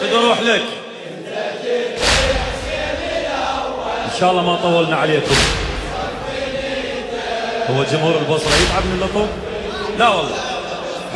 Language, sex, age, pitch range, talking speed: Arabic, male, 30-49, 170-235 Hz, 85 wpm